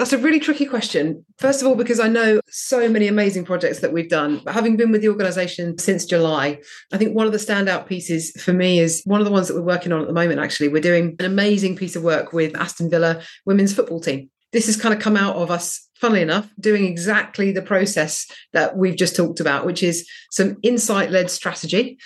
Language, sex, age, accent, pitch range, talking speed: English, female, 40-59, British, 165-200 Hz, 230 wpm